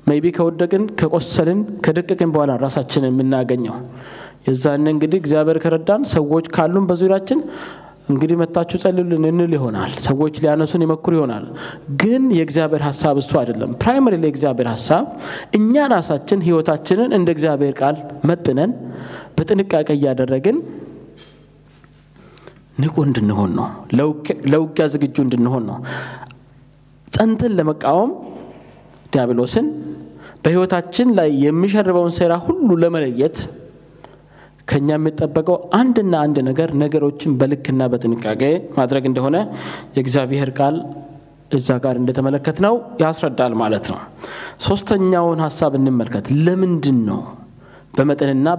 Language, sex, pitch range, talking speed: Amharic, male, 135-170 Hz, 95 wpm